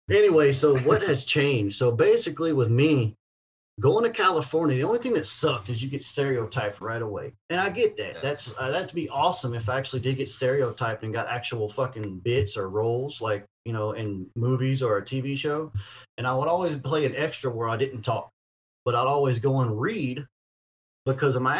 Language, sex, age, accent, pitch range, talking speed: English, male, 30-49, American, 105-135 Hz, 205 wpm